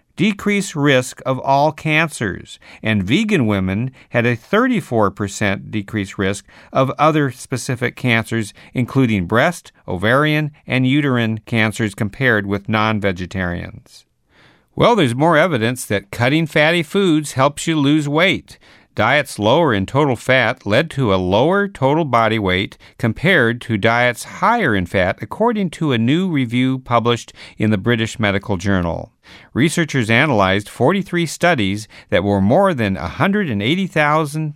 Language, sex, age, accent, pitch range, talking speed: English, male, 50-69, American, 105-150 Hz, 130 wpm